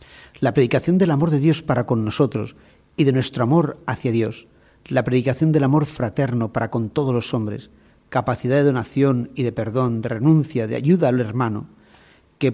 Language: Spanish